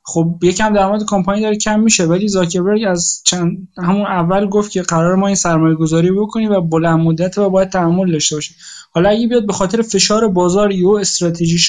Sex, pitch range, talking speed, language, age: male, 165-205 Hz, 180 wpm, Persian, 20-39